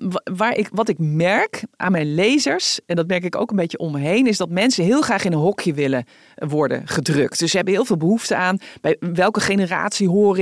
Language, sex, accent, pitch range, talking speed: Dutch, female, Dutch, 170-205 Hz, 220 wpm